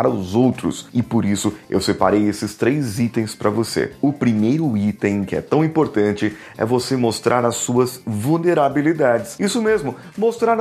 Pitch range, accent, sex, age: 110-155 Hz, Brazilian, male, 30-49